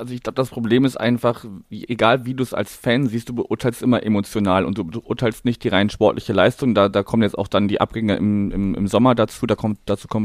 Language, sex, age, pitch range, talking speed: German, male, 30-49, 95-115 Hz, 240 wpm